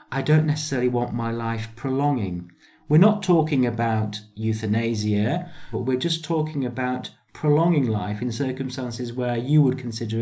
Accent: British